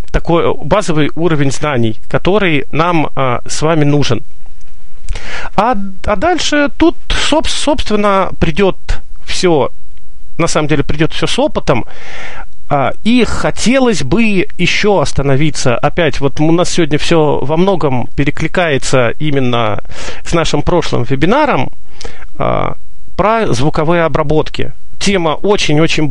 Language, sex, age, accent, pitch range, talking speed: Russian, male, 40-59, native, 135-180 Hz, 110 wpm